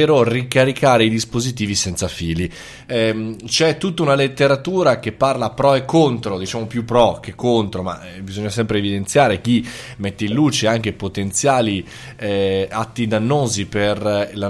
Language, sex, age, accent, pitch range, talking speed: Italian, male, 20-39, native, 100-125 Hz, 145 wpm